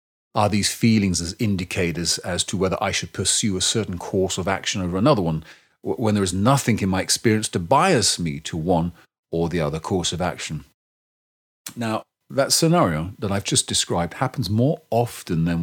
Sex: male